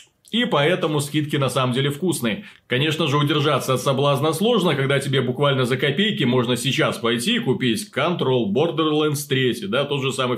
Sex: male